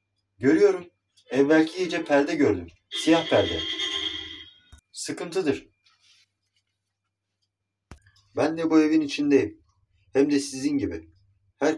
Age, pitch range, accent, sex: 40-59, 100-145 Hz, native, male